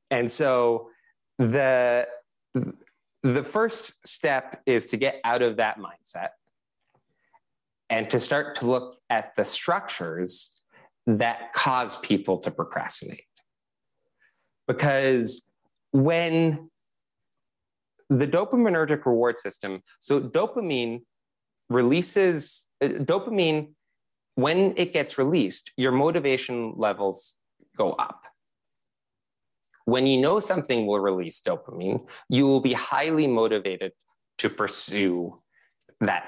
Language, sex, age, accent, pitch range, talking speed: English, male, 30-49, American, 100-135 Hz, 100 wpm